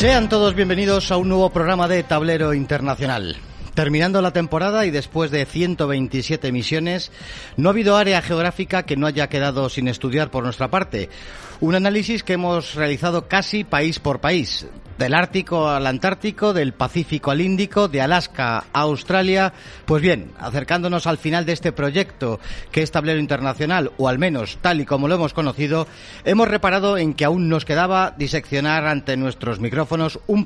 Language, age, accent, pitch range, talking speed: Spanish, 40-59, Spanish, 130-175 Hz, 170 wpm